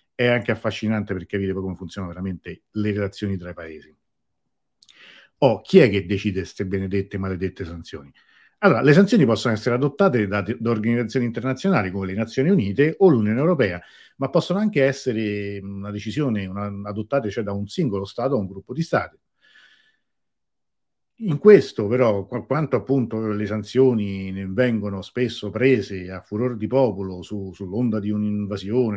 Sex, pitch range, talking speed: male, 100-125 Hz, 160 wpm